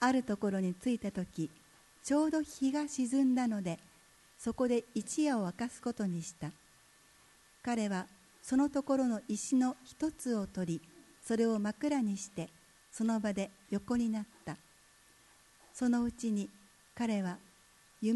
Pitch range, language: 185-235 Hz, Japanese